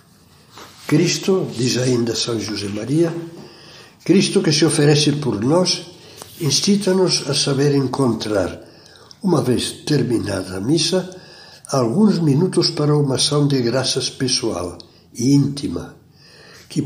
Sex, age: male, 60-79